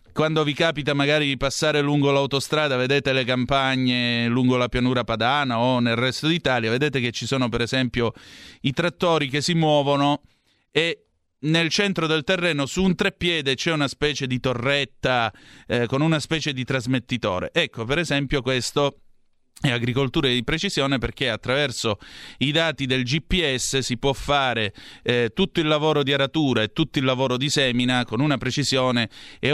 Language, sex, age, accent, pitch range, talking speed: Italian, male, 30-49, native, 120-145 Hz, 165 wpm